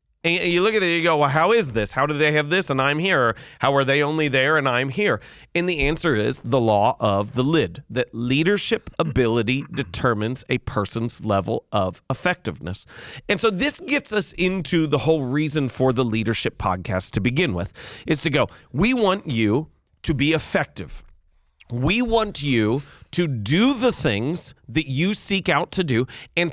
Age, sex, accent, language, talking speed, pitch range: 30-49, male, American, English, 190 wpm, 120-170 Hz